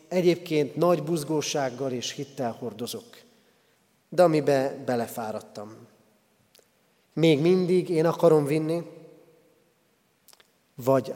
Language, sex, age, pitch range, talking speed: Hungarian, male, 40-59, 120-160 Hz, 80 wpm